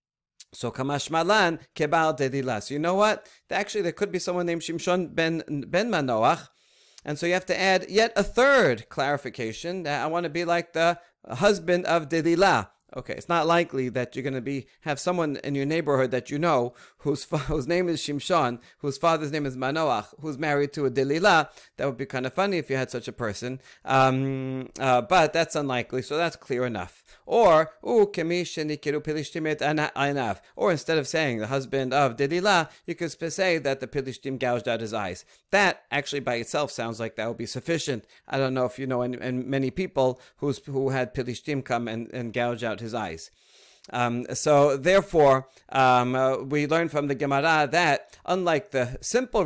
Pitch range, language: 130-170 Hz, English